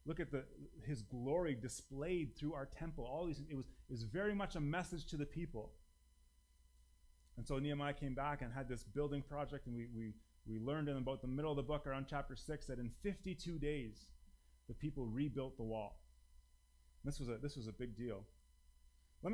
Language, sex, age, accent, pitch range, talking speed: English, male, 30-49, American, 120-175 Hz, 200 wpm